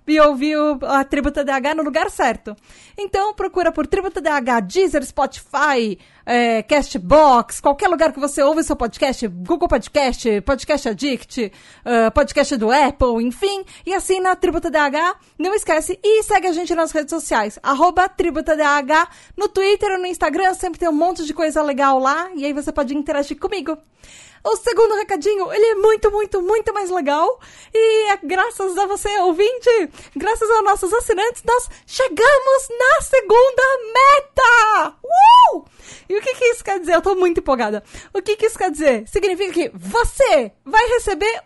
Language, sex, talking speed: Portuguese, female, 170 wpm